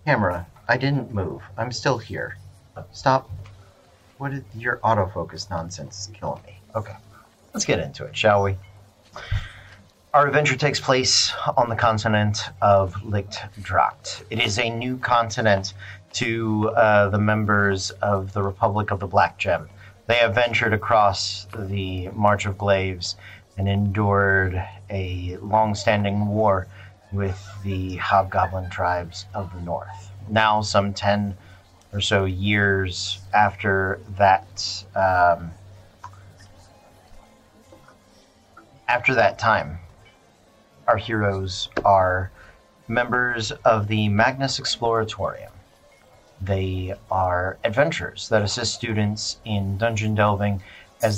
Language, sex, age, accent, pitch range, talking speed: English, male, 40-59, American, 95-110 Hz, 115 wpm